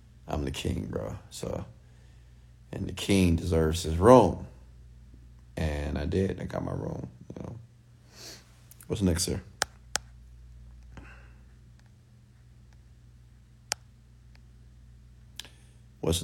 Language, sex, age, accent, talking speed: English, male, 30-49, American, 80 wpm